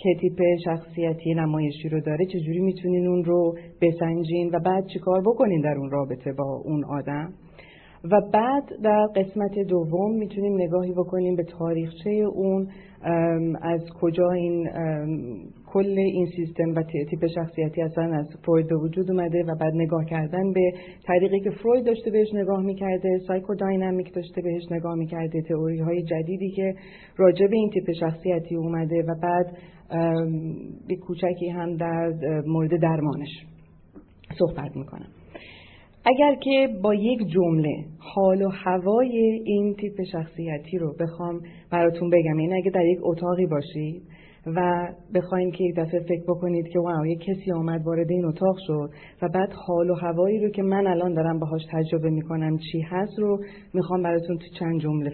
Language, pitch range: Persian, 165-190 Hz